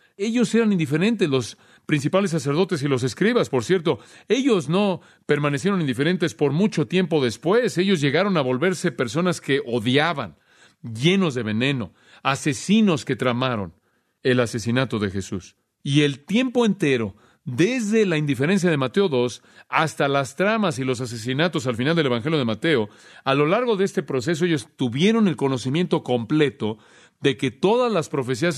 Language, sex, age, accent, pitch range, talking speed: Spanish, male, 40-59, Mexican, 125-180 Hz, 155 wpm